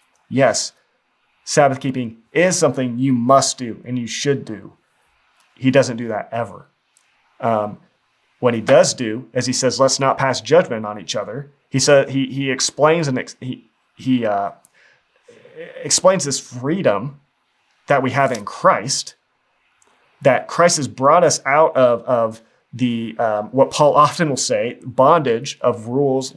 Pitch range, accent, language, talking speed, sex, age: 120-145 Hz, American, English, 150 wpm, male, 30-49